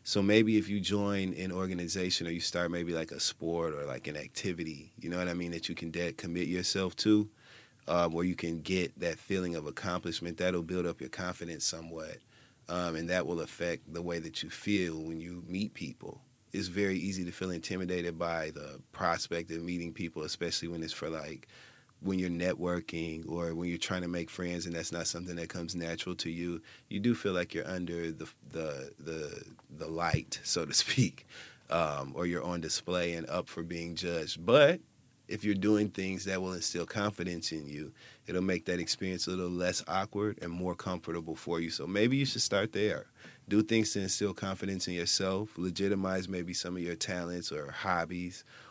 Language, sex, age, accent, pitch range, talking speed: English, male, 30-49, American, 85-95 Hz, 200 wpm